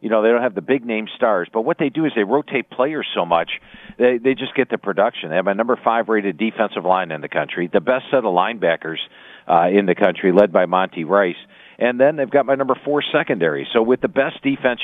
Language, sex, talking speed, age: English, male, 235 wpm, 50-69